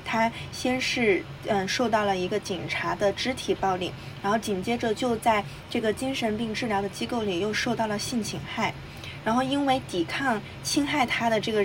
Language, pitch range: Chinese, 190-235 Hz